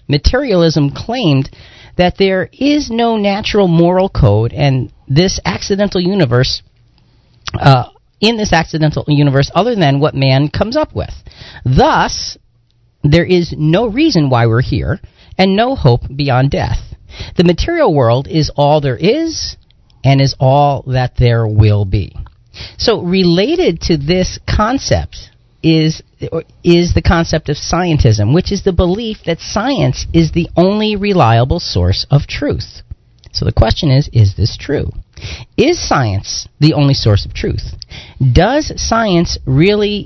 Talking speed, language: 140 wpm, English